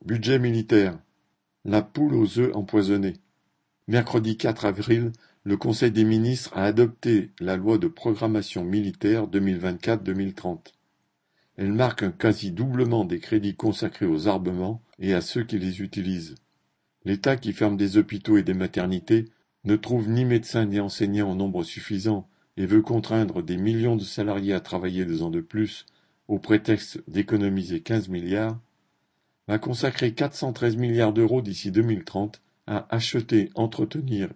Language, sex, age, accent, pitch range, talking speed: French, male, 50-69, French, 100-115 Hz, 145 wpm